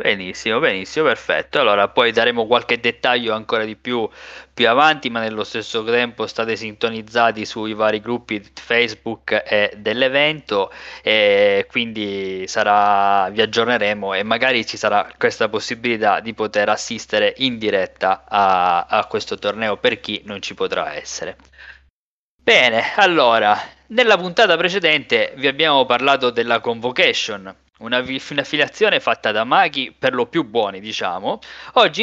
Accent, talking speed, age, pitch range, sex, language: native, 135 wpm, 20-39, 115-185 Hz, male, Italian